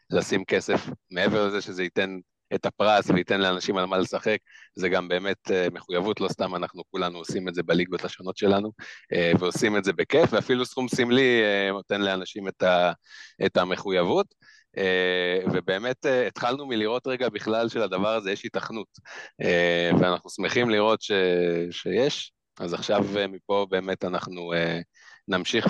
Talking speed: 135 wpm